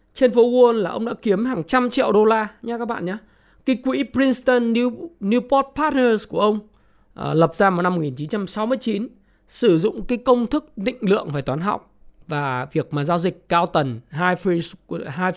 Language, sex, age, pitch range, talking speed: Vietnamese, male, 20-39, 165-235 Hz, 190 wpm